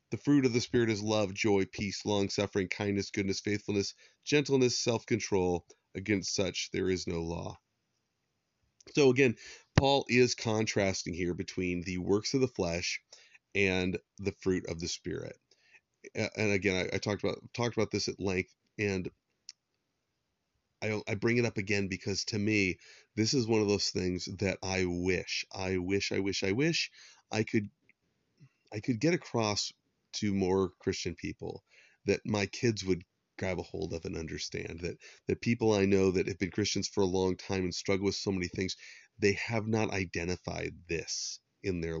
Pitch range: 95-110 Hz